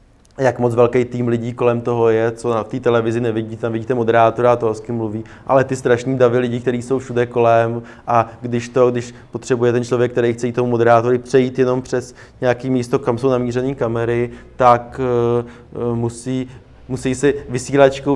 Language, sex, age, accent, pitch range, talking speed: Czech, male, 20-39, native, 115-125 Hz, 185 wpm